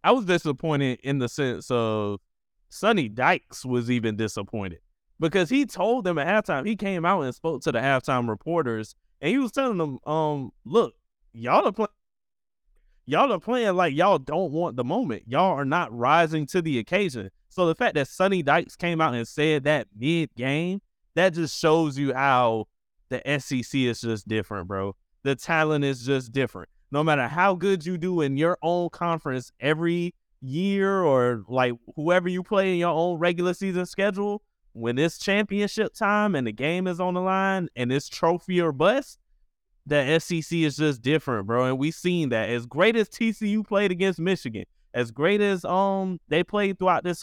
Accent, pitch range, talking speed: American, 125-180 Hz, 185 wpm